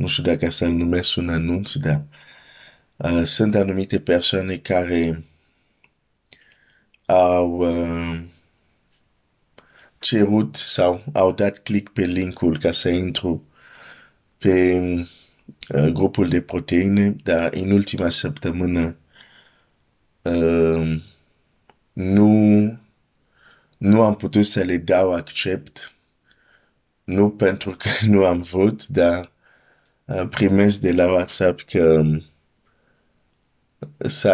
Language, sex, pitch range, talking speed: Romanian, male, 80-95 Hz, 100 wpm